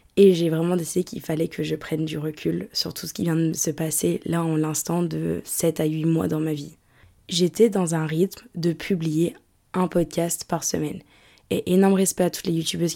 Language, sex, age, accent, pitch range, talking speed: French, female, 20-39, French, 165-195 Hz, 220 wpm